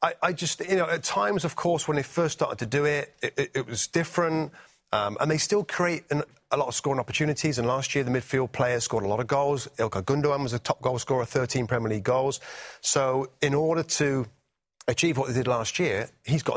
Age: 40-59